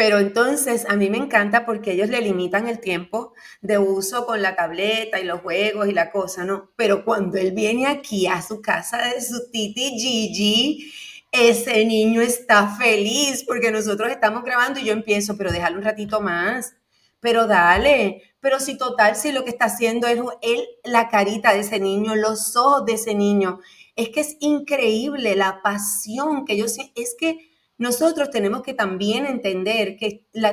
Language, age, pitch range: Spanish, 30-49, 205-250 Hz